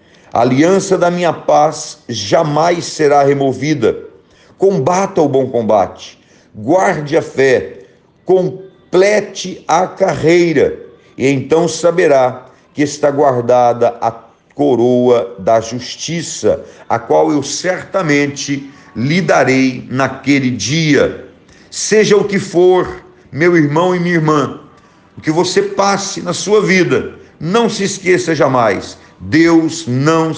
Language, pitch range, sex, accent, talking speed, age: Portuguese, 140-185 Hz, male, Brazilian, 115 wpm, 50-69